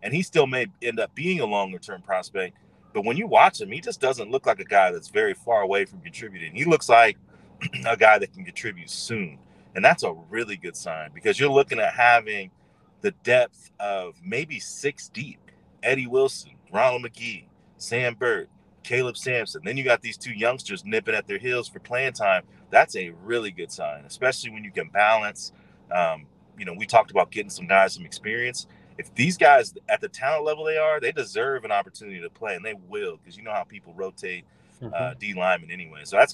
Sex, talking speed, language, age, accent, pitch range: male, 210 wpm, English, 30-49, American, 100-145 Hz